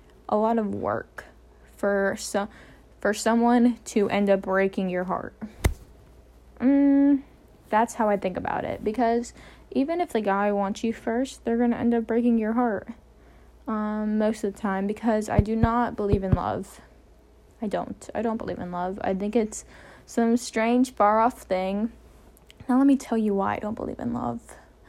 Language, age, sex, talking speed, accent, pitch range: English, 10-29, female, 180 wpm, American, 205-250 Hz